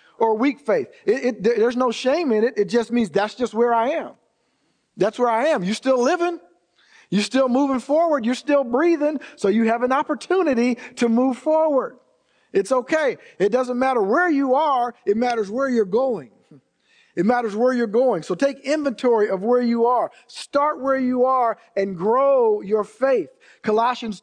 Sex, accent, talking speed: male, American, 180 wpm